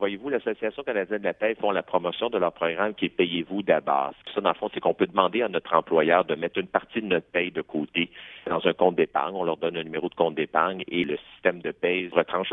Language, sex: French, male